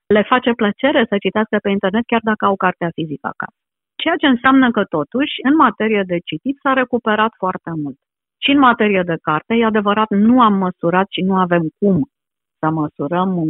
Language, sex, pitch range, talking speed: Romanian, female, 160-220 Hz, 185 wpm